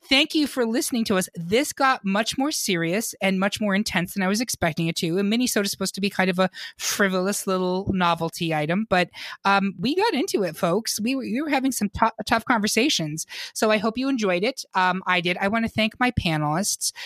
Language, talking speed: English, 230 wpm